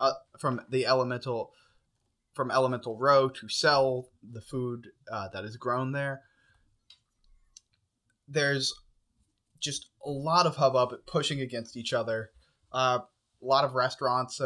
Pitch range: 110-140 Hz